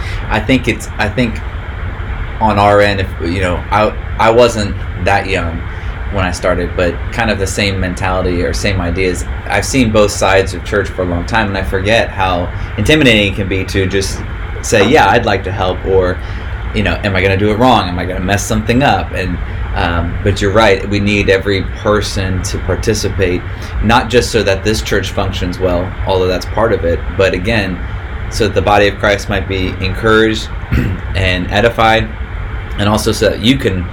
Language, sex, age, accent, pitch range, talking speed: English, male, 20-39, American, 90-110 Hz, 200 wpm